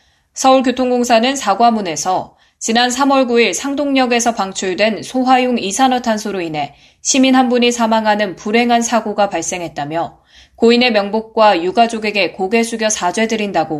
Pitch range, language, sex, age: 185-245 Hz, Korean, female, 20-39